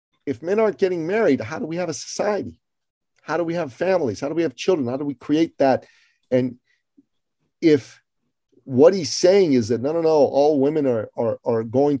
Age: 40-59